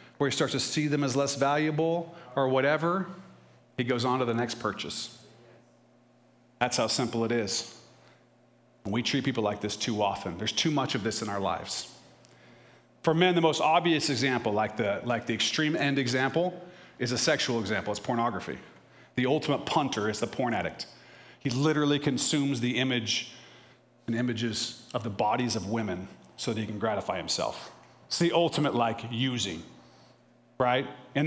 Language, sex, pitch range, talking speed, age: English, male, 115-150 Hz, 170 wpm, 40-59